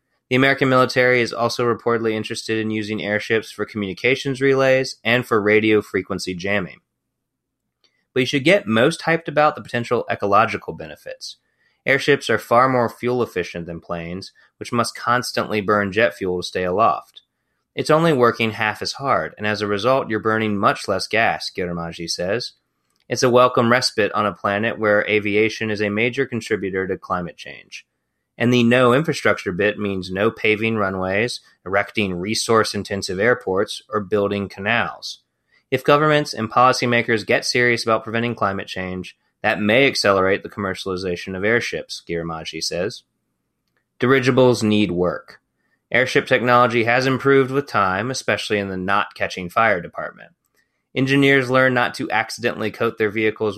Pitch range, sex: 100-125 Hz, male